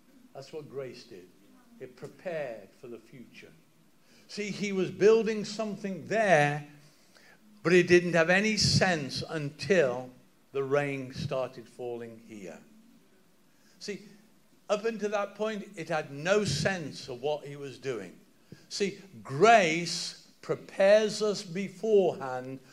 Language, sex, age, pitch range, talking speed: English, male, 60-79, 150-200 Hz, 120 wpm